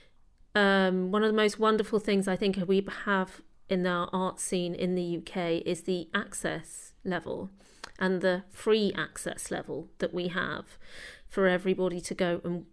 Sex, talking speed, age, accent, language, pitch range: female, 165 wpm, 40-59, British, English, 175-200 Hz